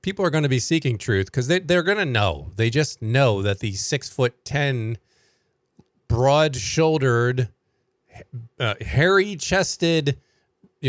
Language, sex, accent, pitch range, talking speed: English, male, American, 110-140 Hz, 150 wpm